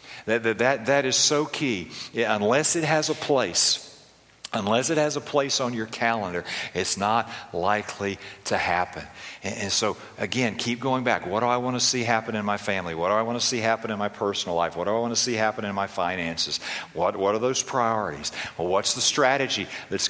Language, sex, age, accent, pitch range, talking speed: English, male, 50-69, American, 100-120 Hz, 220 wpm